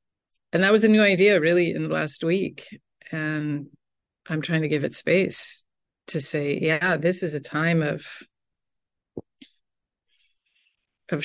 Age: 30-49